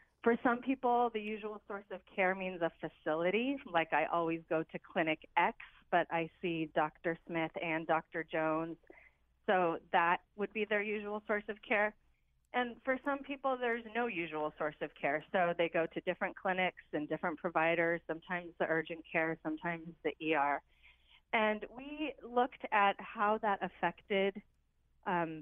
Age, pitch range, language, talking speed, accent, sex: 30-49, 165-210 Hz, English, 165 wpm, American, female